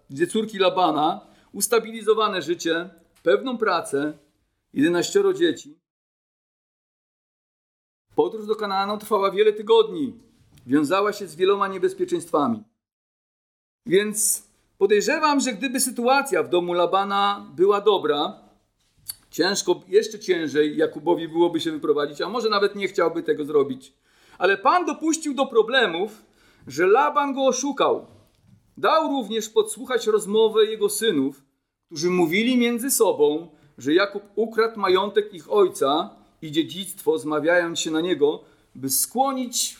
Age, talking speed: 50-69, 115 wpm